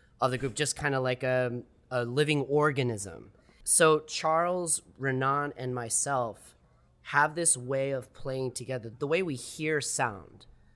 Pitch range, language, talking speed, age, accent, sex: 110-145 Hz, English, 145 wpm, 30-49, American, male